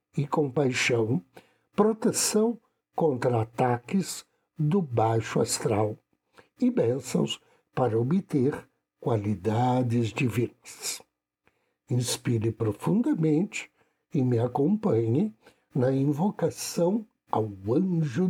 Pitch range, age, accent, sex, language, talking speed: 110-155 Hz, 60-79, Brazilian, male, Portuguese, 75 wpm